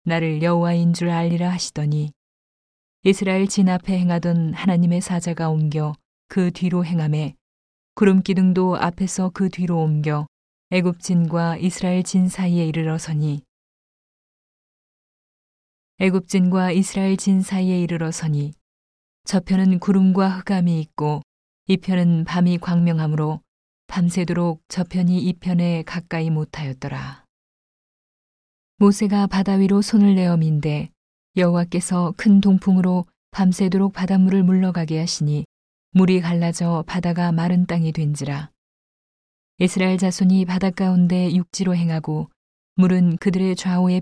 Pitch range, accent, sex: 160-185 Hz, native, female